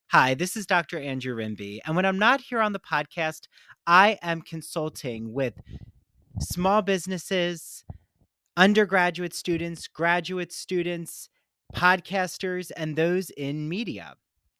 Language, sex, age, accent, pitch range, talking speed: English, male, 30-49, American, 135-185 Hz, 120 wpm